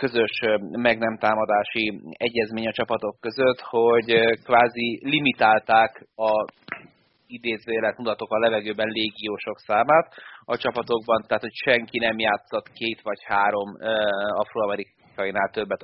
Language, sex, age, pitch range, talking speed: Hungarian, male, 30-49, 110-125 Hz, 110 wpm